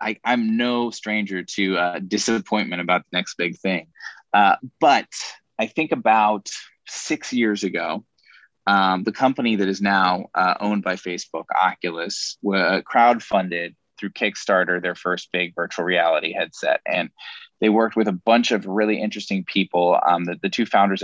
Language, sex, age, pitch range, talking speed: English, male, 20-39, 90-110 Hz, 160 wpm